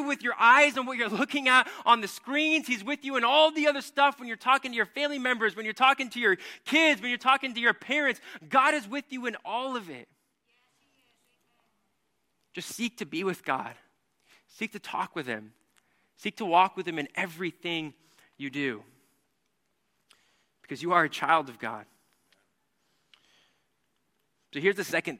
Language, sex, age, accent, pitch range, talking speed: English, male, 20-39, American, 180-260 Hz, 185 wpm